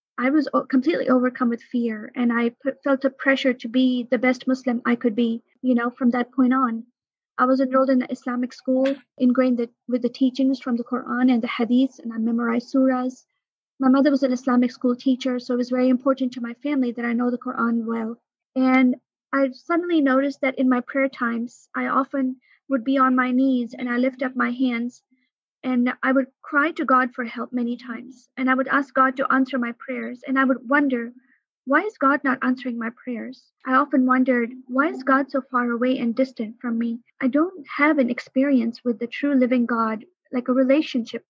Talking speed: 210 wpm